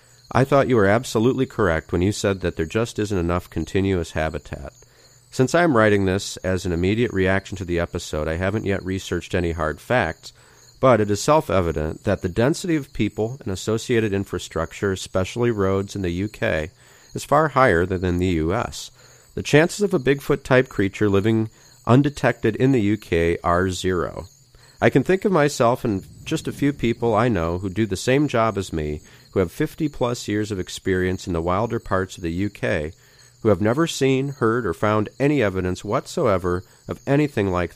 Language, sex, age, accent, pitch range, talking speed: English, male, 40-59, American, 90-125 Hz, 185 wpm